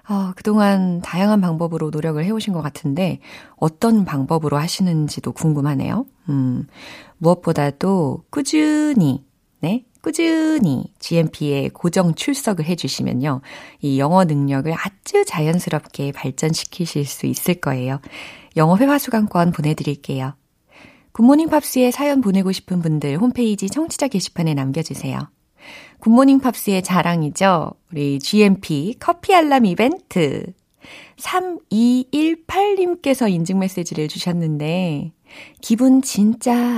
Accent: native